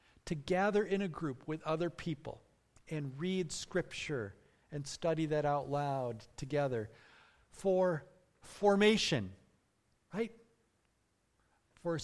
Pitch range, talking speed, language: 145-215 Hz, 105 wpm, English